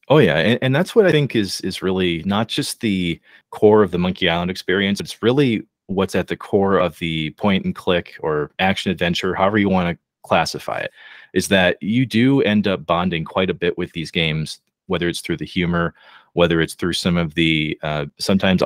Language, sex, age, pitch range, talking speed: English, male, 30-49, 85-120 Hz, 210 wpm